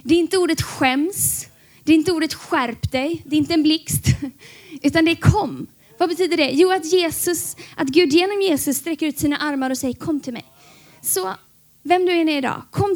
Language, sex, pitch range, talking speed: Swedish, female, 255-335 Hz, 215 wpm